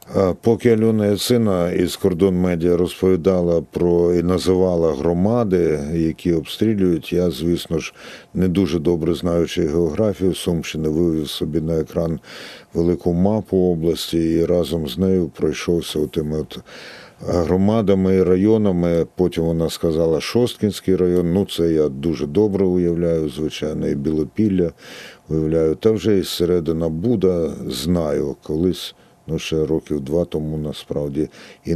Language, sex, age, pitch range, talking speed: Ukrainian, male, 50-69, 80-95 Hz, 130 wpm